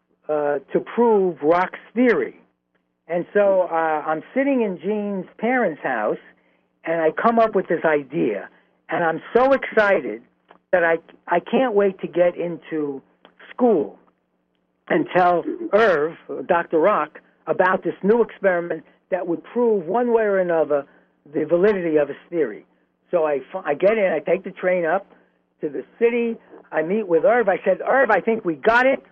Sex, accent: male, American